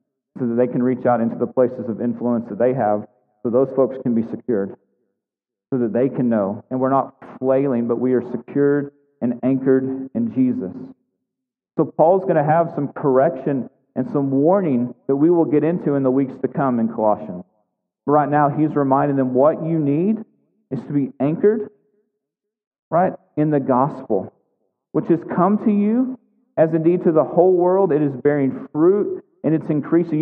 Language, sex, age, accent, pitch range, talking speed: English, male, 40-59, American, 130-165 Hz, 185 wpm